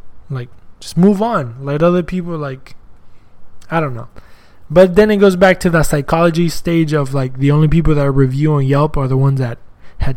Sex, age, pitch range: male, 20-39, 125-165 Hz